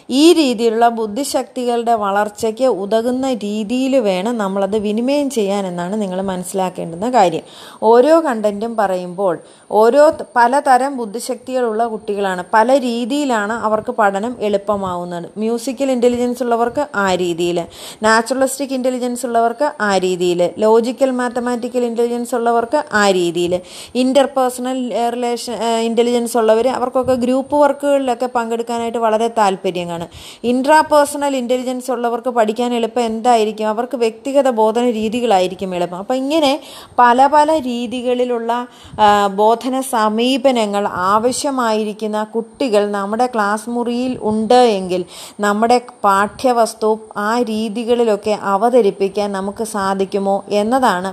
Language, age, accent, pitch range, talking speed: Malayalam, 30-49, native, 205-250 Hz, 100 wpm